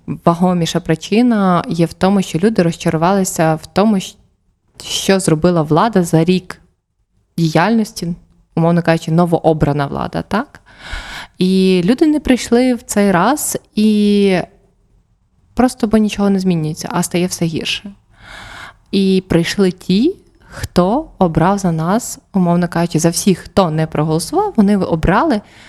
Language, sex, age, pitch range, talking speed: Ukrainian, female, 20-39, 170-215 Hz, 125 wpm